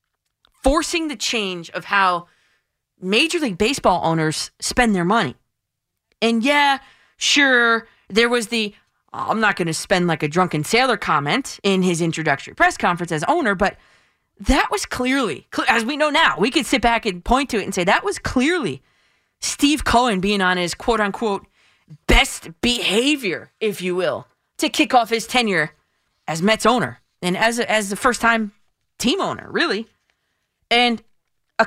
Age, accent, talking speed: 20-39, American, 170 wpm